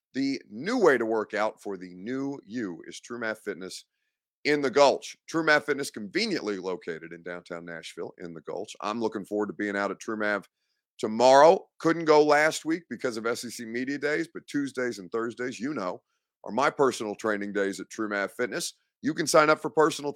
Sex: male